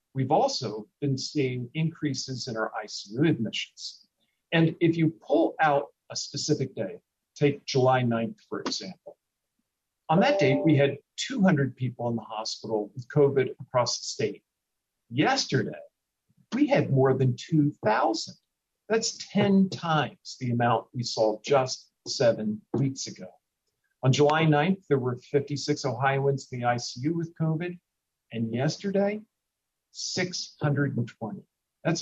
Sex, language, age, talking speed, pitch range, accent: male, English, 50-69, 130 wpm, 125-160 Hz, American